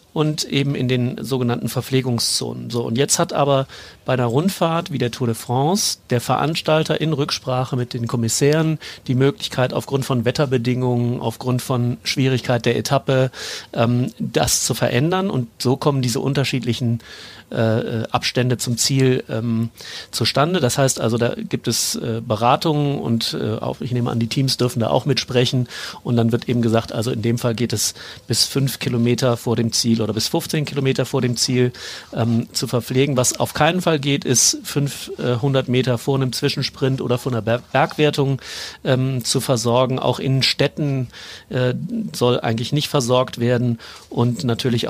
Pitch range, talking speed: 115-135 Hz, 170 wpm